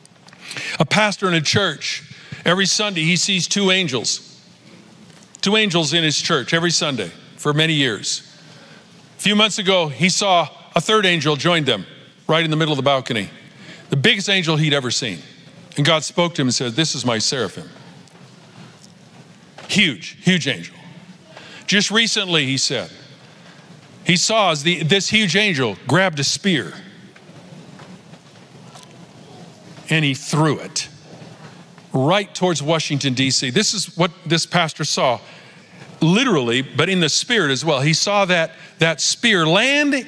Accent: American